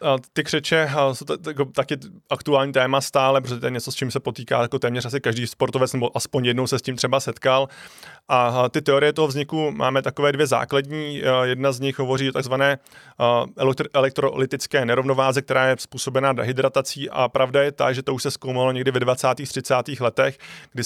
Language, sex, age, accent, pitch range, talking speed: Czech, male, 20-39, native, 125-140 Hz, 185 wpm